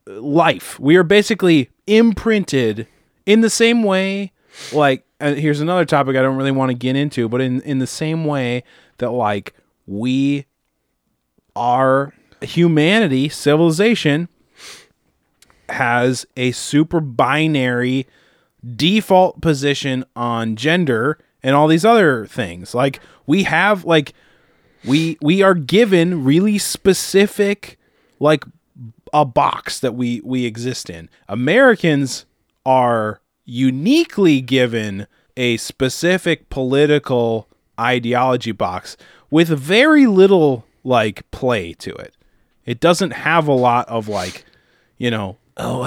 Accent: American